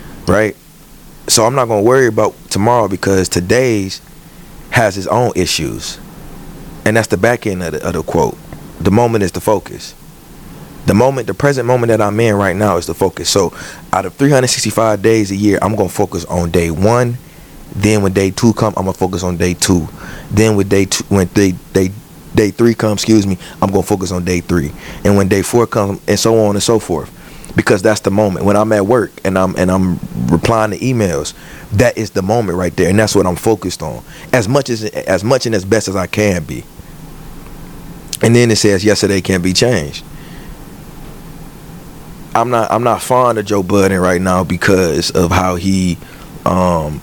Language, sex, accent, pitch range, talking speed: English, male, American, 90-115 Hz, 205 wpm